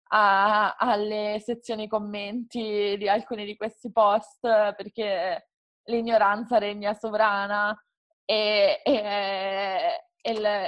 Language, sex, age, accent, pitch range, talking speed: Italian, female, 20-39, native, 210-245 Hz, 85 wpm